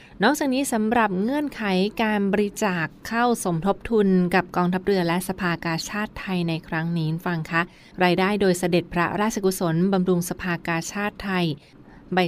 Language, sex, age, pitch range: Thai, female, 20-39, 170-195 Hz